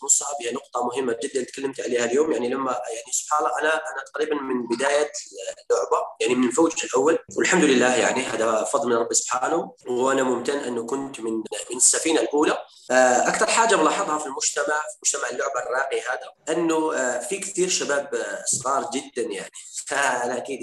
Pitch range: 145-200 Hz